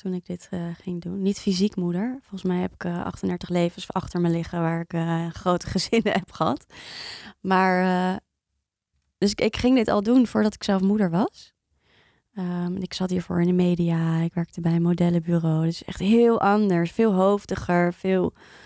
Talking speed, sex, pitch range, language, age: 190 wpm, female, 175-200 Hz, Dutch, 20-39